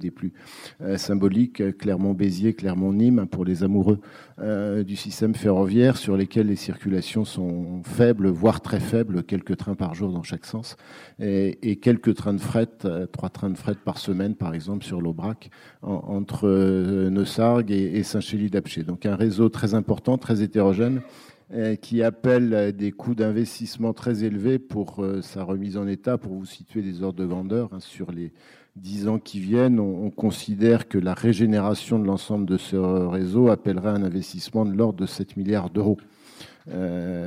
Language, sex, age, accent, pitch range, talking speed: French, male, 50-69, French, 95-110 Hz, 175 wpm